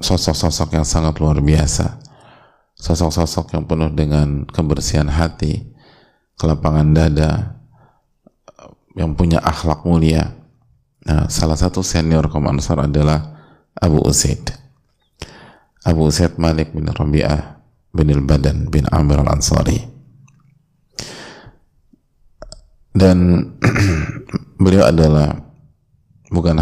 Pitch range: 75-85 Hz